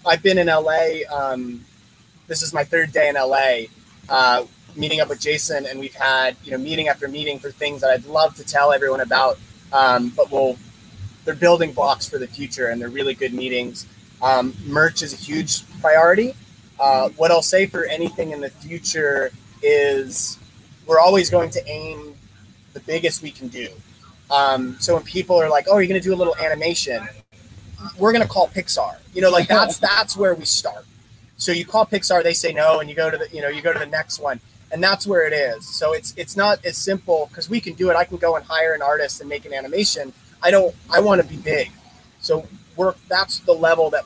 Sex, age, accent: male, 20-39, American